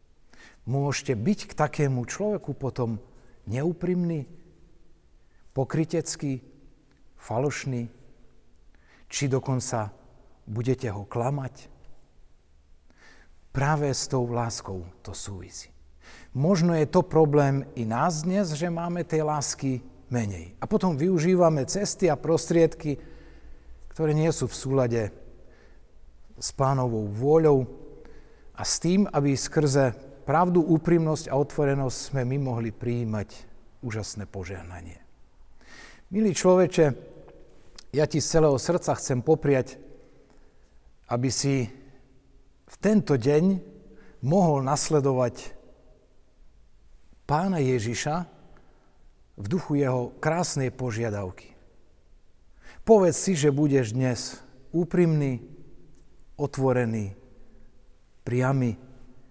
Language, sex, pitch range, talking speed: Slovak, male, 115-155 Hz, 95 wpm